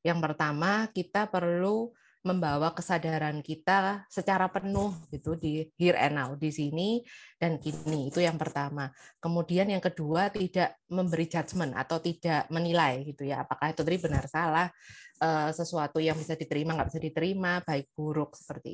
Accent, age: native, 20-39